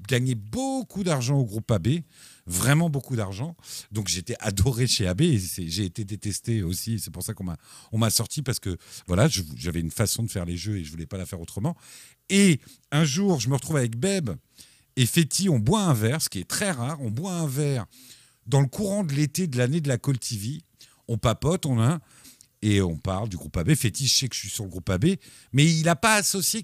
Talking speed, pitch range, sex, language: 240 wpm, 115-170 Hz, male, French